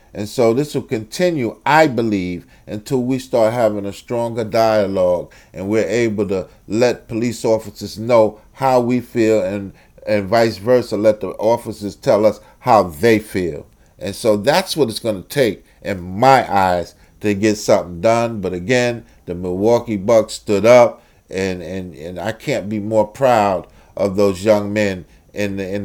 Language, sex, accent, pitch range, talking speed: English, male, American, 100-120 Hz, 165 wpm